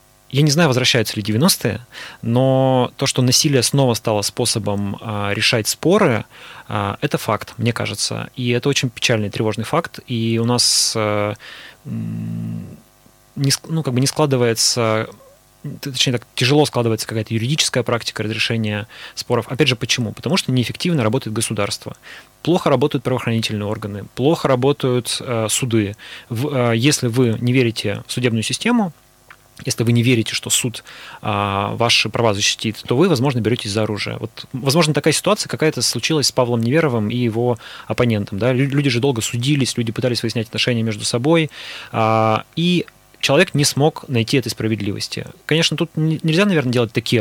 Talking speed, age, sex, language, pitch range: 155 wpm, 20-39, male, Russian, 110-140 Hz